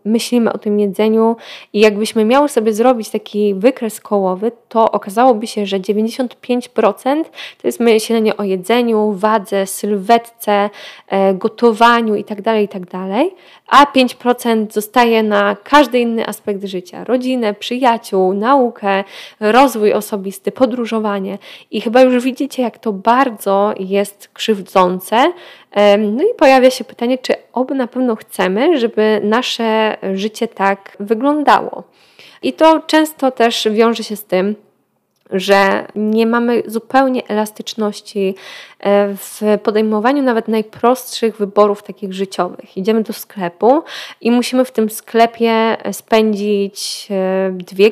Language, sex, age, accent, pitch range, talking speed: Polish, female, 20-39, native, 205-245 Hz, 125 wpm